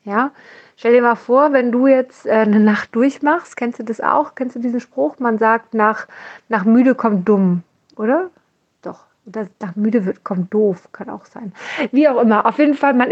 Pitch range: 210-260 Hz